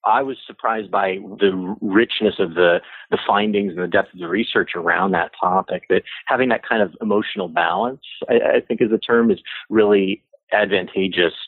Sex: male